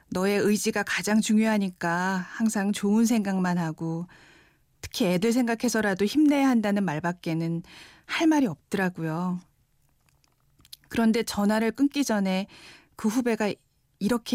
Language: Korean